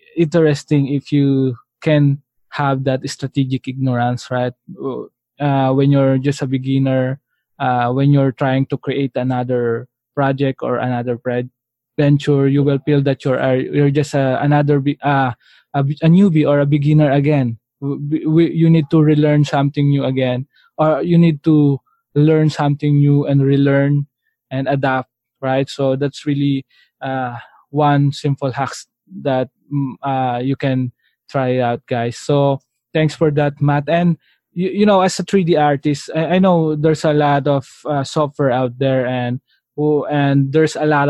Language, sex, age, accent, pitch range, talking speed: English, male, 20-39, Filipino, 130-150 Hz, 165 wpm